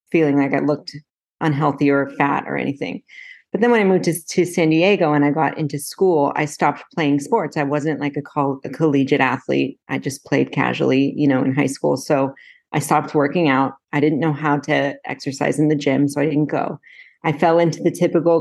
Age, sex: 30-49, female